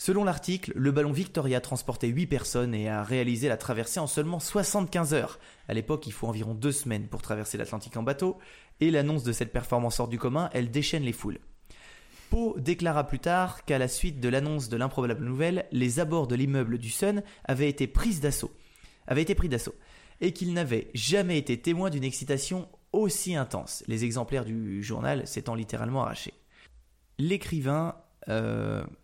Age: 20-39